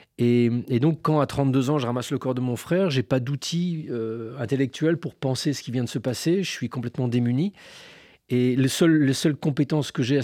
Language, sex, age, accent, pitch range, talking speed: French, male, 40-59, French, 125-155 Hz, 240 wpm